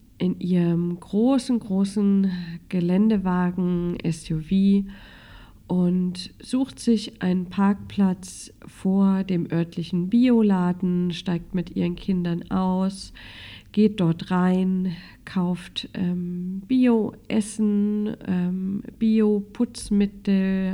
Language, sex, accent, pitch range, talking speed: German, female, German, 180-225 Hz, 85 wpm